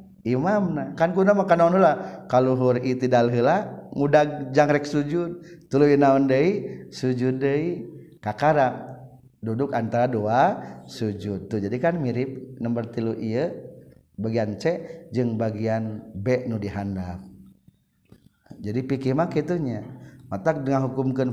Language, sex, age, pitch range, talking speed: Indonesian, male, 50-69, 115-155 Hz, 115 wpm